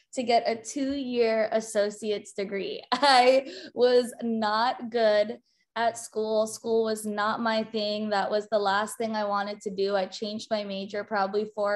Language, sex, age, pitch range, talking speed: English, female, 20-39, 205-225 Hz, 165 wpm